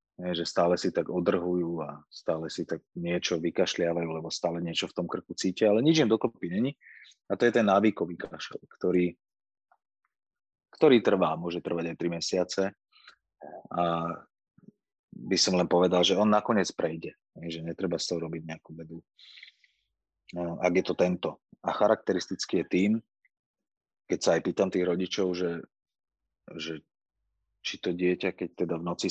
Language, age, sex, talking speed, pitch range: Slovak, 30-49, male, 155 wpm, 85-95 Hz